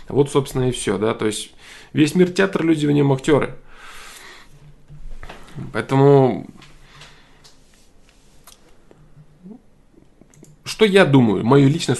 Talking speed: 100 wpm